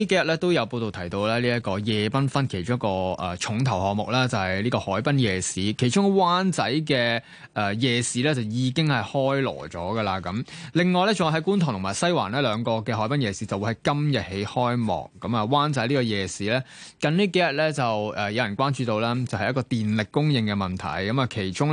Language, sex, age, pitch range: Chinese, male, 20-39, 105-145 Hz